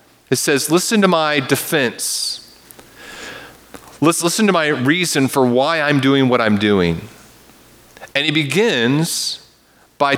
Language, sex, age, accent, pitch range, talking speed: English, male, 30-49, American, 110-140 Hz, 130 wpm